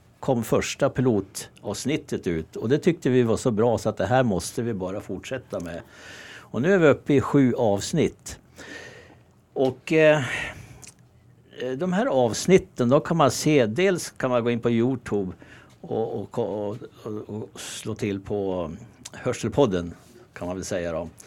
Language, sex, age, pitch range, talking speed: Swedish, male, 60-79, 110-140 Hz, 160 wpm